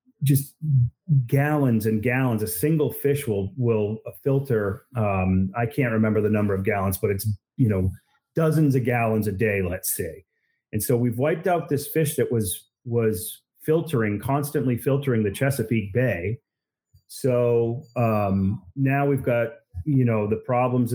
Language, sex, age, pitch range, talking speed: English, male, 30-49, 105-130 Hz, 155 wpm